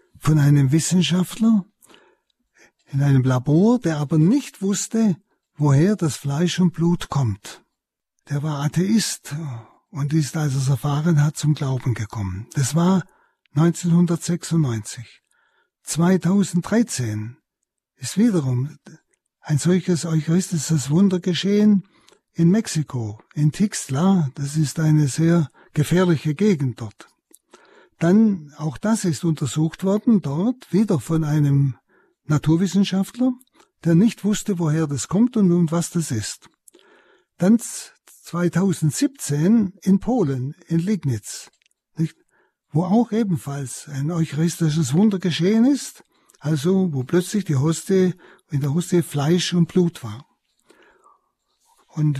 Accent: German